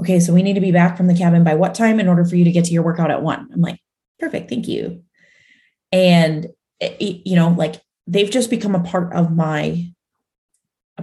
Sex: female